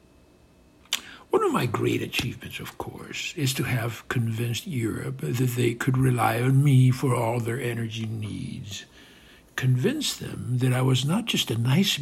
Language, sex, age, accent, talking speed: English, male, 60-79, American, 160 wpm